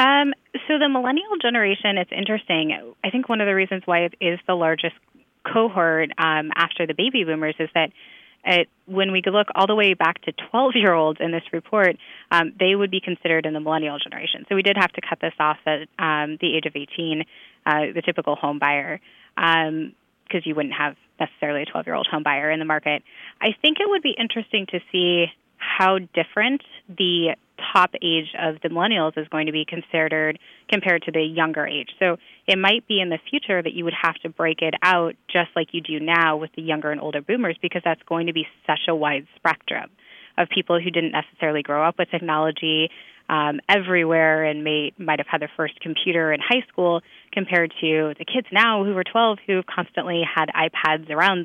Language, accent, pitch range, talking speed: English, American, 155-190 Hz, 210 wpm